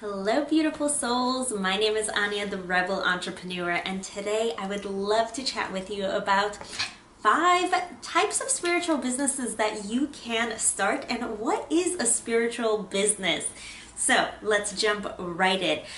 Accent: American